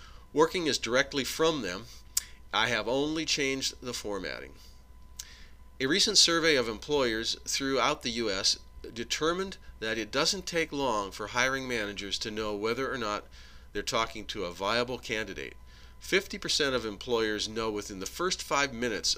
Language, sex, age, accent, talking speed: English, male, 40-59, American, 155 wpm